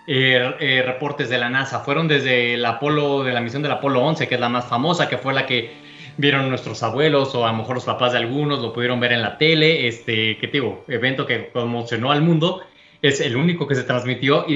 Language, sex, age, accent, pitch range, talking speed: Spanish, male, 20-39, Mexican, 125-155 Hz, 230 wpm